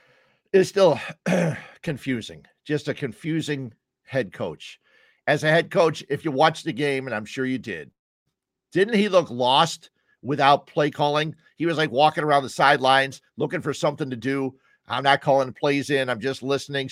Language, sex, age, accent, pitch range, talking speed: English, male, 50-69, American, 125-155 Hz, 175 wpm